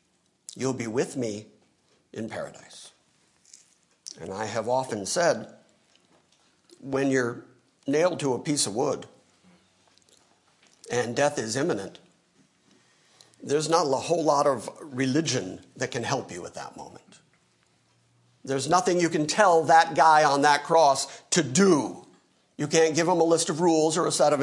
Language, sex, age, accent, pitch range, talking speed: English, male, 50-69, American, 145-225 Hz, 150 wpm